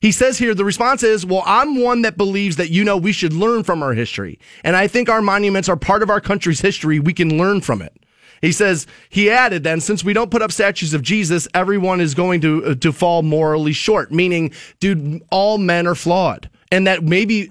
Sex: male